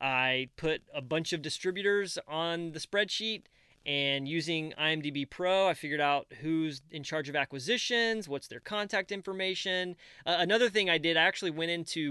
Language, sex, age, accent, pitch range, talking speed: English, male, 30-49, American, 150-180 Hz, 170 wpm